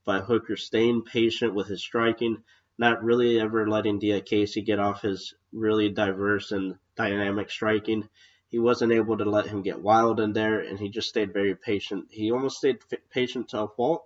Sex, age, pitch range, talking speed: male, 20-39, 100-110 Hz, 190 wpm